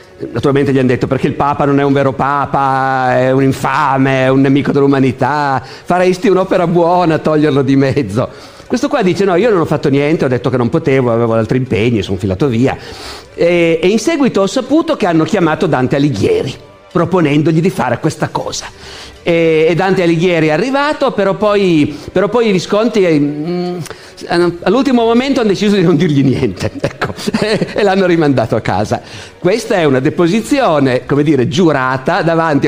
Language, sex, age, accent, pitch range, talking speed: Italian, male, 50-69, native, 130-175 Hz, 175 wpm